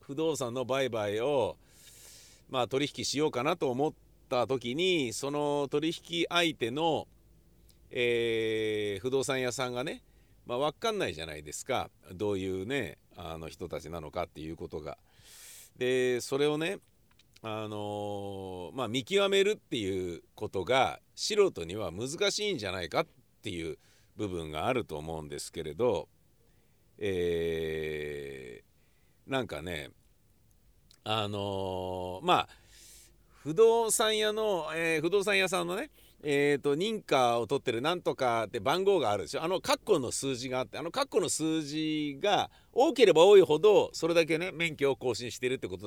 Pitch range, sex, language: 95-155 Hz, male, Japanese